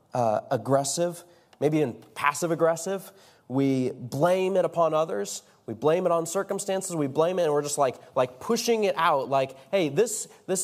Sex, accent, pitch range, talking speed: male, American, 145-195 Hz, 175 wpm